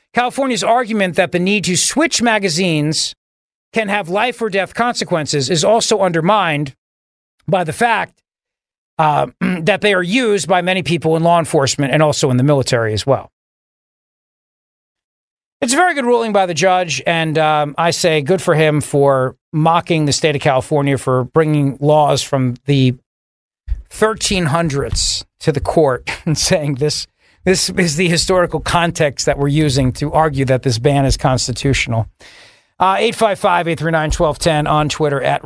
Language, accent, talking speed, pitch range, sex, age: English, American, 155 wpm, 145-205 Hz, male, 40-59